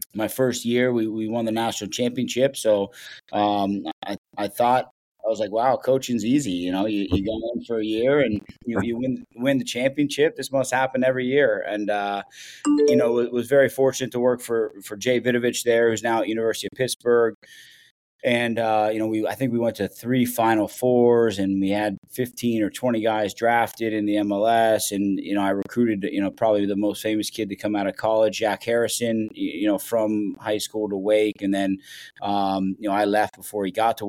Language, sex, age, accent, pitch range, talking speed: English, male, 30-49, American, 100-120 Hz, 215 wpm